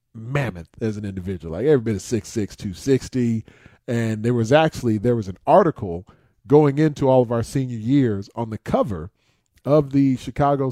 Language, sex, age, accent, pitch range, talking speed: English, male, 40-59, American, 105-130 Hz, 185 wpm